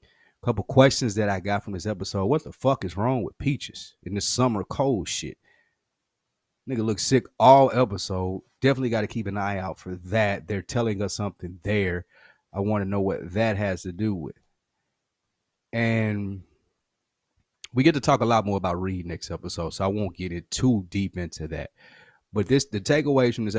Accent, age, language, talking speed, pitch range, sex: American, 30-49, English, 195 wpm, 95-115 Hz, male